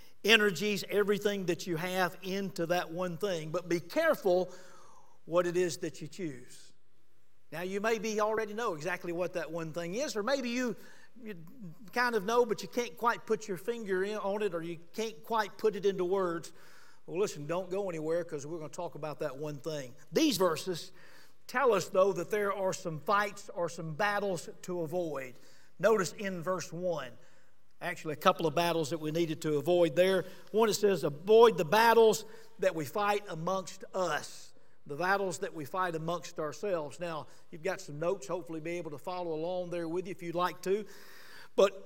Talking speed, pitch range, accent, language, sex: 195 wpm, 170-210 Hz, American, English, male